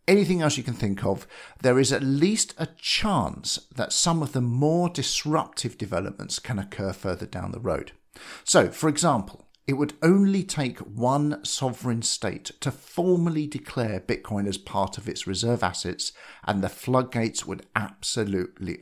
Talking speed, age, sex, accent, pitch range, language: 160 wpm, 50-69, male, British, 95-150 Hz, English